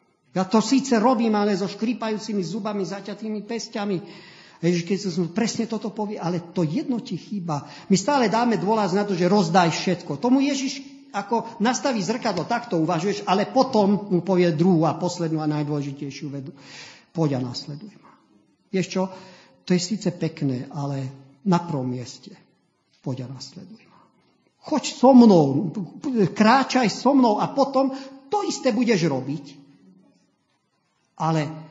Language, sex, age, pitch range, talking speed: Slovak, male, 50-69, 160-220 Hz, 150 wpm